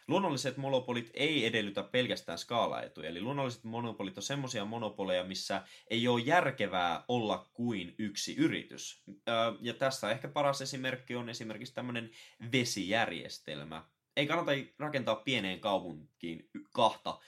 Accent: Finnish